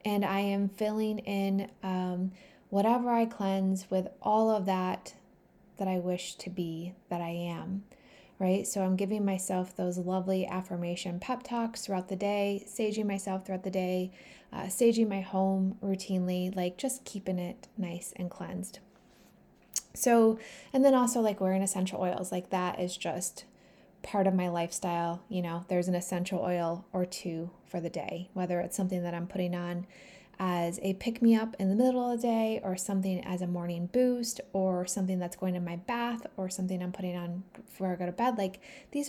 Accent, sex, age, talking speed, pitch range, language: American, female, 20-39, 185 wpm, 180-210 Hz, English